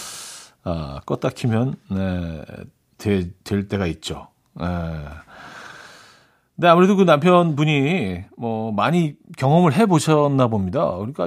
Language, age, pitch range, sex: Korean, 40-59, 115-160 Hz, male